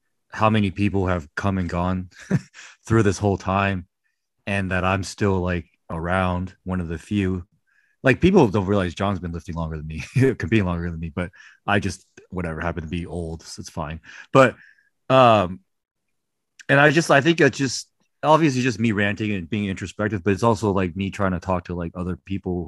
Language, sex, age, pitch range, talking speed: English, male, 30-49, 85-105 Hz, 200 wpm